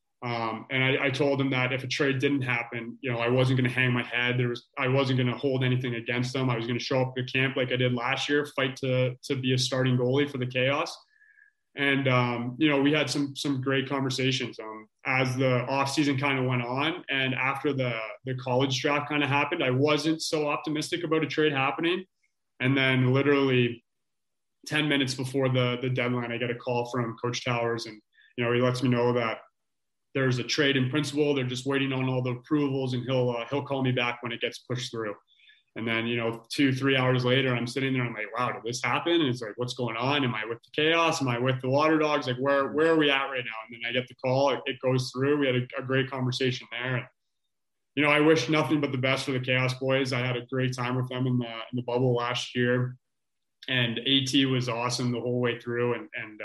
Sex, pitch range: male, 120-140 Hz